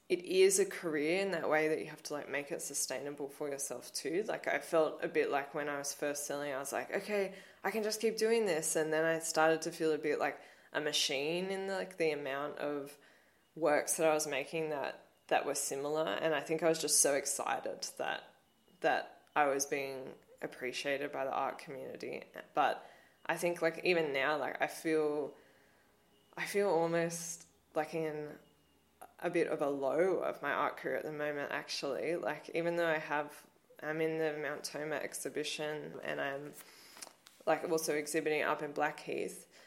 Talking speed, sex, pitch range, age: 195 wpm, female, 145-165 Hz, 20-39